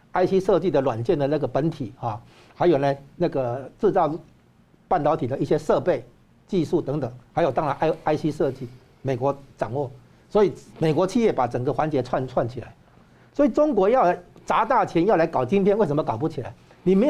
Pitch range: 140-190 Hz